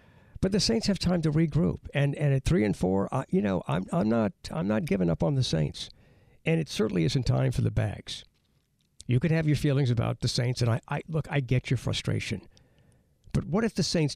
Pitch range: 125-170 Hz